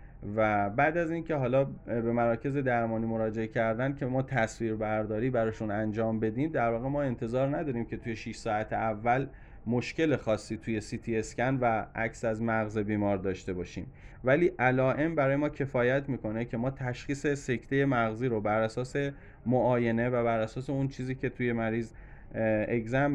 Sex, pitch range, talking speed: male, 110-130 Hz, 165 wpm